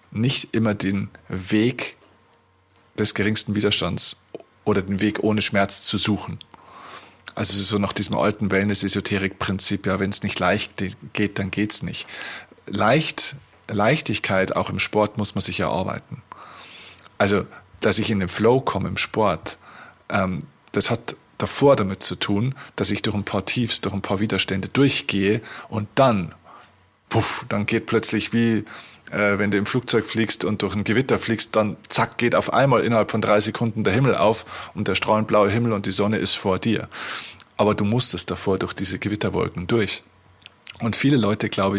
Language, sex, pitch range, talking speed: German, male, 100-110 Hz, 170 wpm